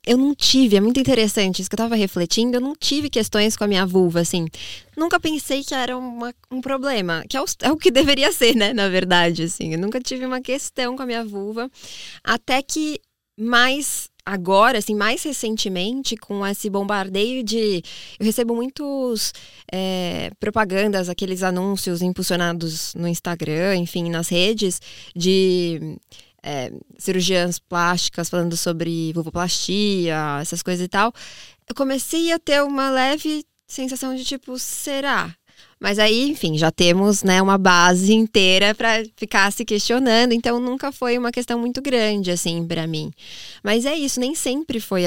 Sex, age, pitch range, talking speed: female, 20-39, 180-255 Hz, 160 wpm